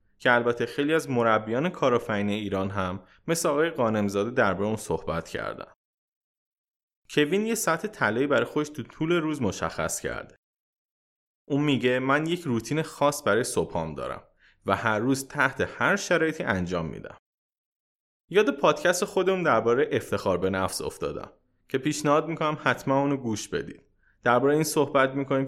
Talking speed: 150 wpm